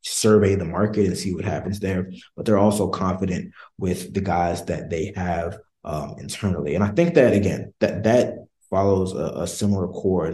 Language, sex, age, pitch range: English, male, 20-39, 90-100 Hz